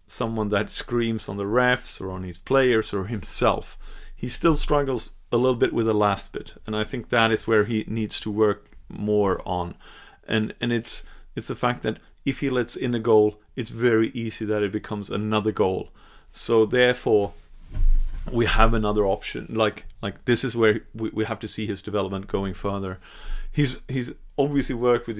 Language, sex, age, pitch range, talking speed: English, male, 30-49, 105-125 Hz, 190 wpm